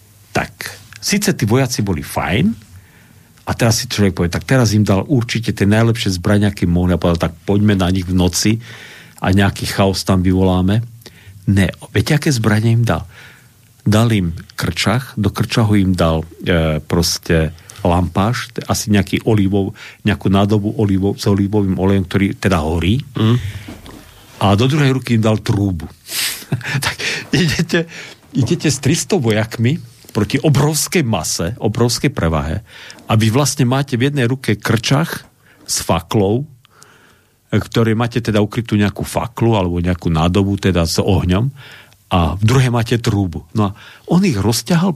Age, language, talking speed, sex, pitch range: 50-69, Slovak, 135 wpm, male, 95-120 Hz